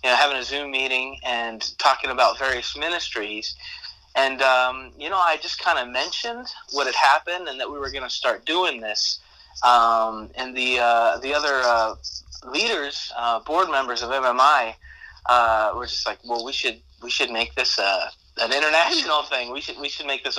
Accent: American